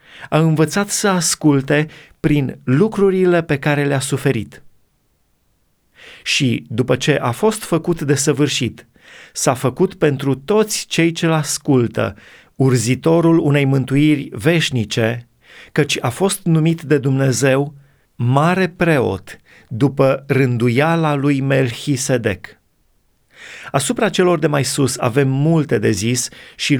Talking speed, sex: 115 wpm, male